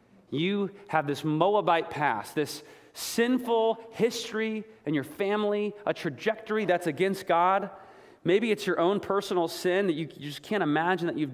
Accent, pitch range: American, 135-195 Hz